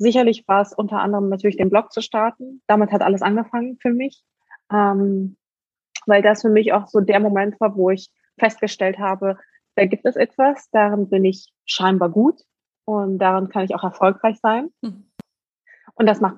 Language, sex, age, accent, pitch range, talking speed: German, female, 20-39, German, 195-225 Hz, 175 wpm